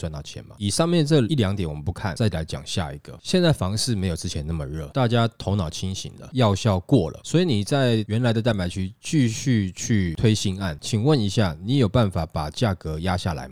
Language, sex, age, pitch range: Chinese, male, 20-39, 85-115 Hz